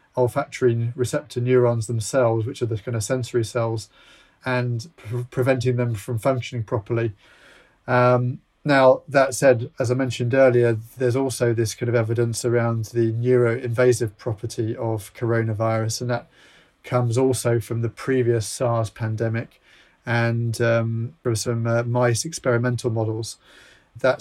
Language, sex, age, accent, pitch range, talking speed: English, male, 30-49, British, 115-125 Hz, 135 wpm